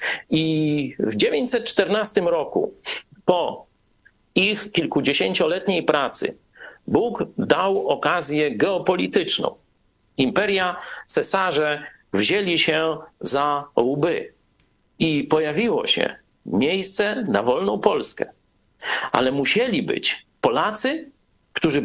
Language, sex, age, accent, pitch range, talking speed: Polish, male, 50-69, native, 160-240 Hz, 80 wpm